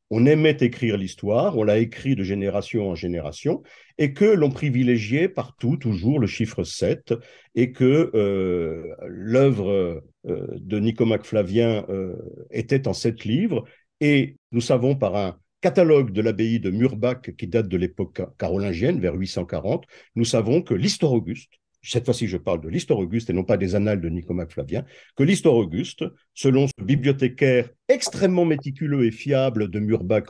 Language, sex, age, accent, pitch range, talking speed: French, male, 50-69, French, 105-150 Hz, 160 wpm